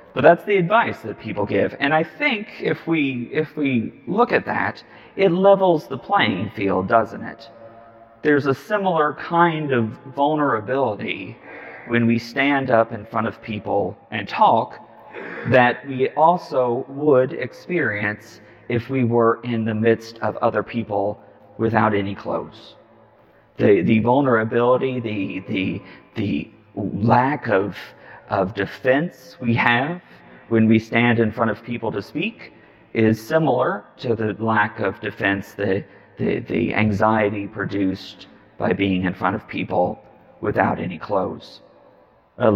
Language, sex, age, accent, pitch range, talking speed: English, male, 40-59, American, 105-135 Hz, 140 wpm